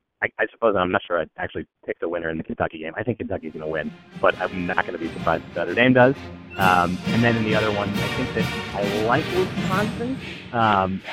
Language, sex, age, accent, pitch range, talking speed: English, male, 30-49, American, 85-110 Hz, 255 wpm